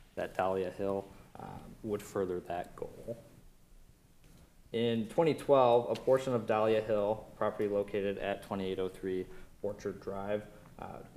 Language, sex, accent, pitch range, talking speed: English, male, American, 95-115 Hz, 115 wpm